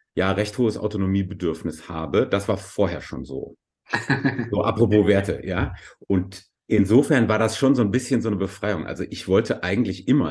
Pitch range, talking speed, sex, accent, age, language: 90-110 Hz, 175 wpm, male, German, 30-49, English